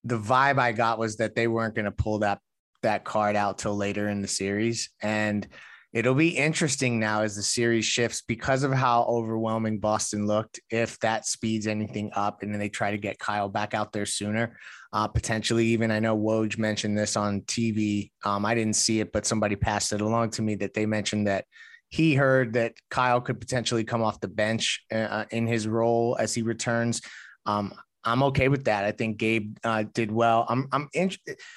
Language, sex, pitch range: English, male, 105-120 Hz